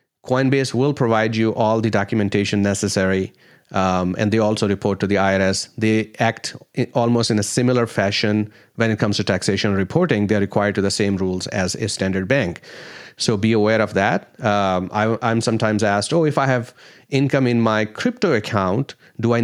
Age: 30-49